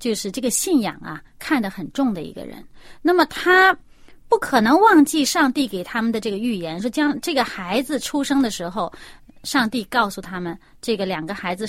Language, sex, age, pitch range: Chinese, female, 30-49, 210-325 Hz